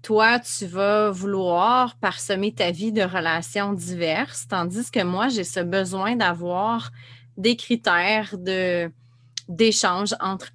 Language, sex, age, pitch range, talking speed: French, female, 30-49, 170-210 Hz, 125 wpm